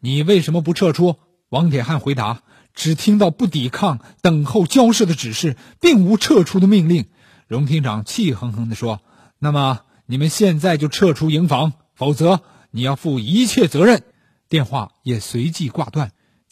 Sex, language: male, Chinese